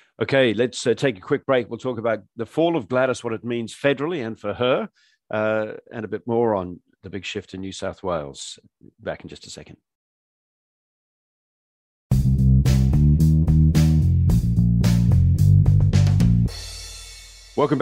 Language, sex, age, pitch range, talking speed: English, male, 50-69, 100-140 Hz, 135 wpm